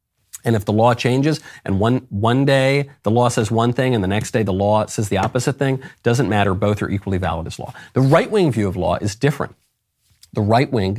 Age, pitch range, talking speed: 40-59, 105-135 Hz, 225 wpm